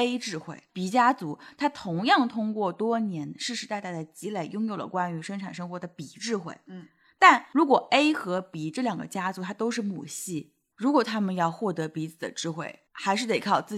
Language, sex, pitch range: Chinese, female, 175-255 Hz